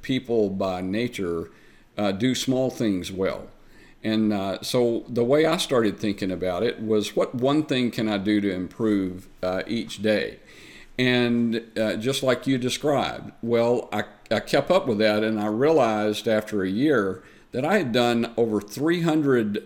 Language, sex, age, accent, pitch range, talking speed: English, male, 50-69, American, 105-130 Hz, 170 wpm